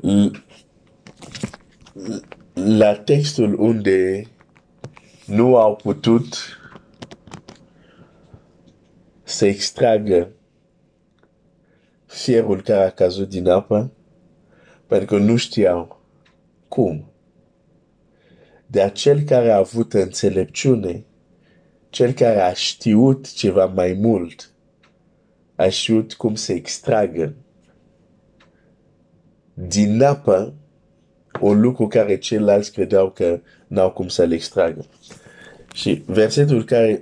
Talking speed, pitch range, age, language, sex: 80 wpm, 95-115 Hz, 50-69, Romanian, male